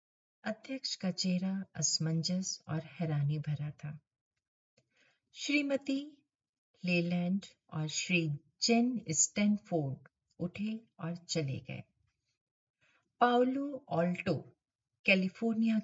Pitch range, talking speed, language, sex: 155-220 Hz, 65 wpm, Hindi, female